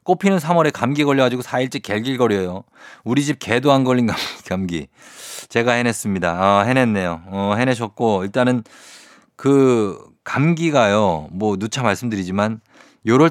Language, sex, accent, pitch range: Korean, male, native, 100-135 Hz